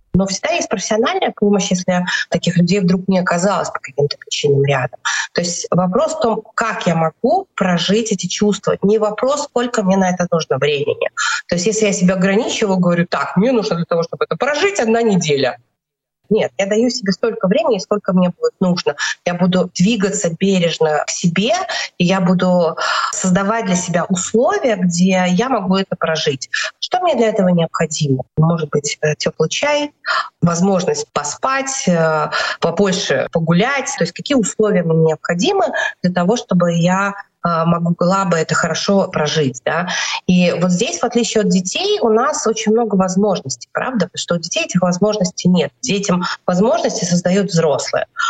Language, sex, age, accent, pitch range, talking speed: Russian, female, 30-49, native, 170-215 Hz, 165 wpm